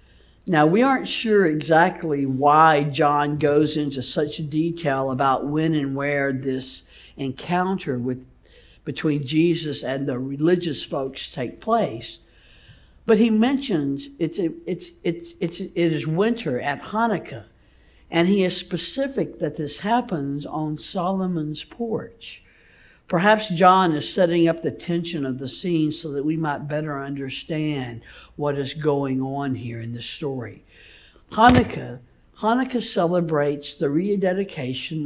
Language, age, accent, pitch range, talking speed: English, 60-79, American, 135-175 Hz, 130 wpm